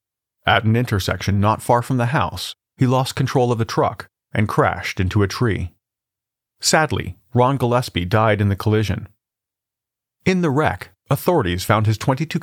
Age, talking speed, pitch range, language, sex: 40-59, 160 wpm, 105-130 Hz, English, male